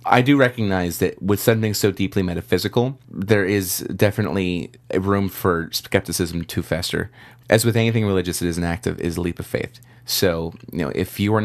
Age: 30-49